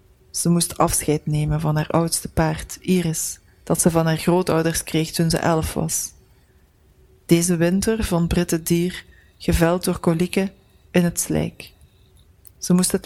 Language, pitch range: Dutch, 140-180 Hz